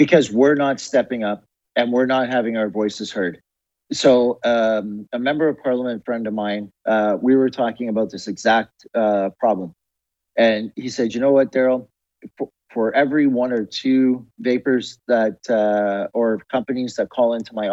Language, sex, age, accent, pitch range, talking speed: English, male, 40-59, American, 105-130 Hz, 175 wpm